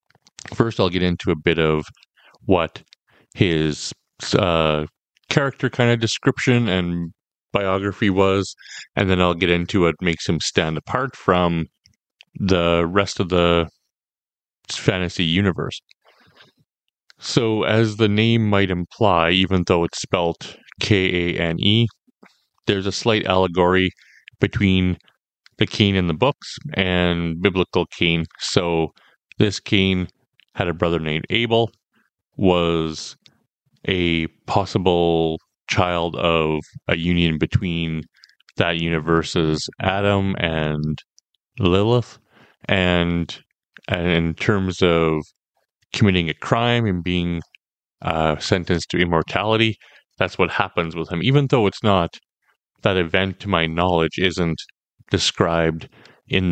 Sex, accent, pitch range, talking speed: male, American, 85-100 Hz, 115 wpm